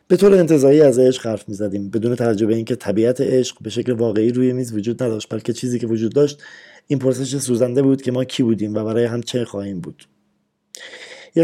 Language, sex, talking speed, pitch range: Persian, male, 215 wpm, 110-140 Hz